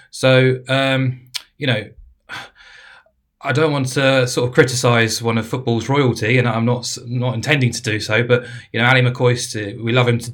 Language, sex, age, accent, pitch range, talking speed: English, male, 20-39, British, 110-125 Hz, 185 wpm